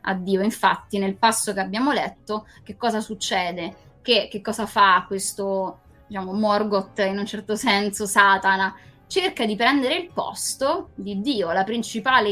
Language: Italian